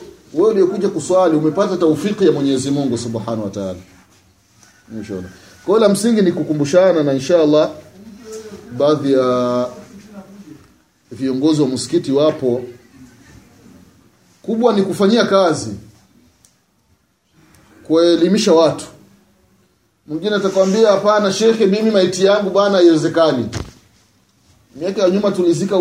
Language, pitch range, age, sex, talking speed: Swahili, 120-175 Hz, 30-49, male, 100 wpm